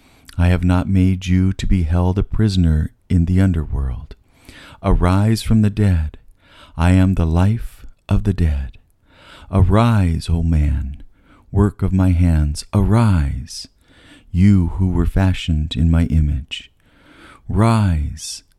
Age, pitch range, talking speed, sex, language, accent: 50-69, 85-100 Hz, 130 wpm, male, English, American